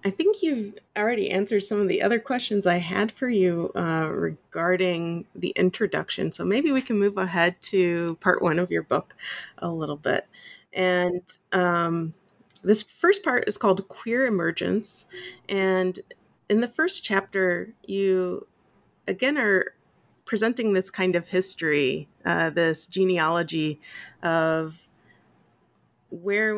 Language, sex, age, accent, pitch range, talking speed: English, female, 30-49, American, 160-200 Hz, 135 wpm